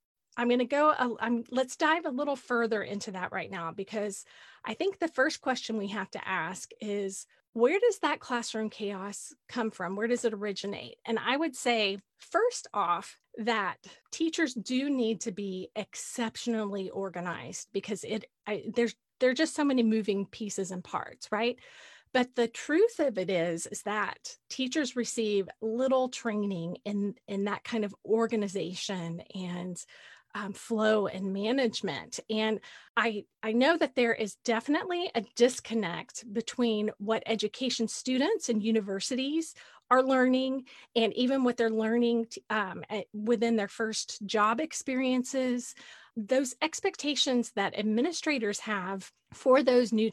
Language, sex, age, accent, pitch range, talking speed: English, female, 30-49, American, 205-255 Hz, 150 wpm